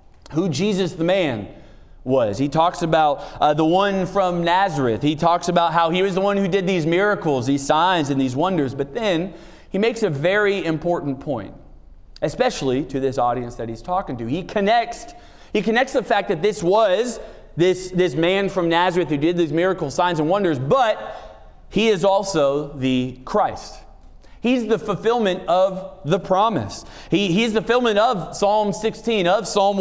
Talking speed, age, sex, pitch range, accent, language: 175 wpm, 30-49, male, 145-200 Hz, American, English